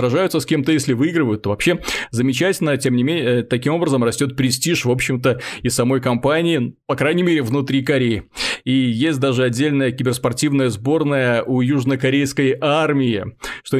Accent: native